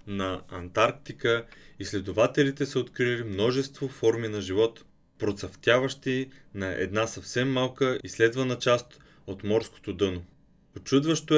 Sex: male